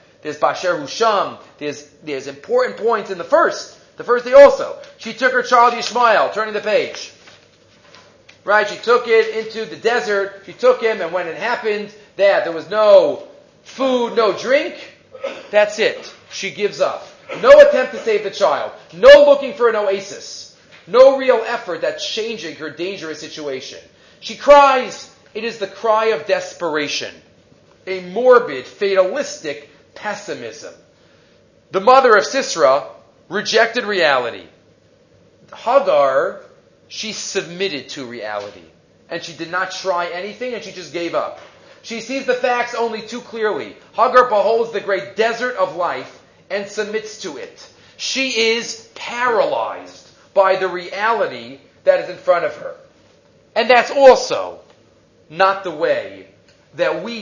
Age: 40-59